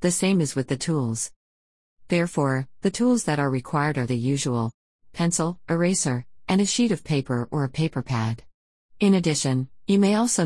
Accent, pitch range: American, 135-170 Hz